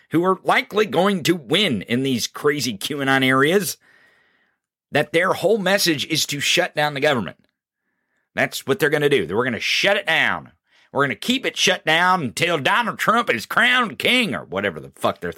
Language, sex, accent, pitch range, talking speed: English, male, American, 135-175 Hz, 200 wpm